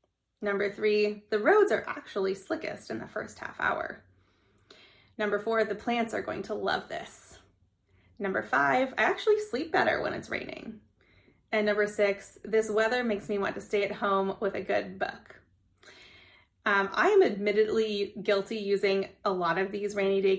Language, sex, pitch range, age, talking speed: English, female, 195-220 Hz, 20-39, 170 wpm